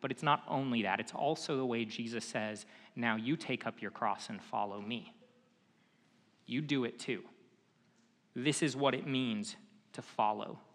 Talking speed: 175 wpm